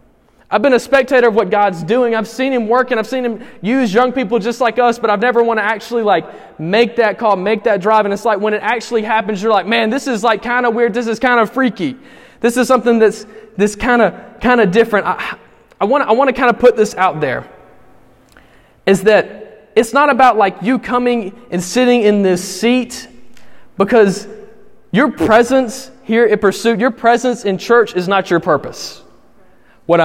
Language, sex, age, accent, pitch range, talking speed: English, male, 20-39, American, 210-245 Hz, 210 wpm